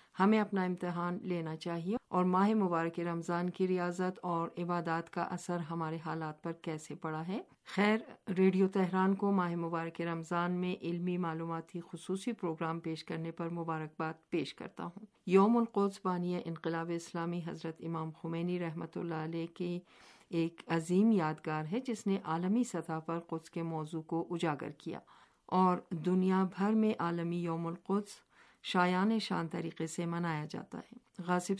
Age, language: 50-69, Urdu